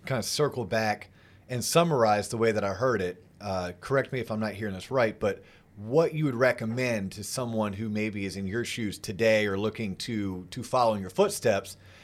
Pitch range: 100-125 Hz